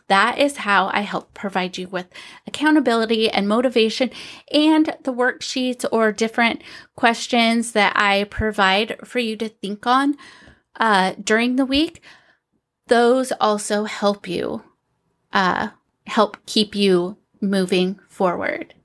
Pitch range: 215-285 Hz